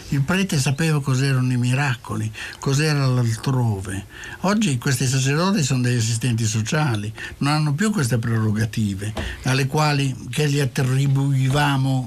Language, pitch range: Italian, 125-150 Hz